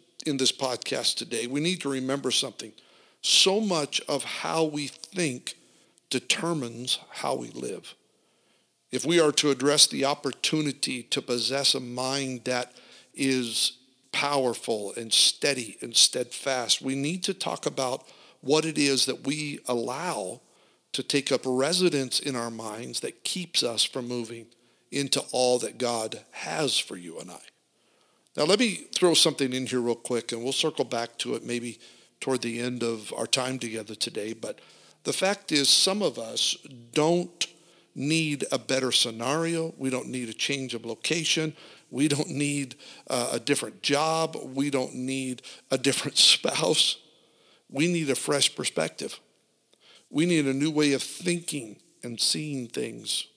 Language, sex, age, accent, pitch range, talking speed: English, male, 50-69, American, 125-155 Hz, 155 wpm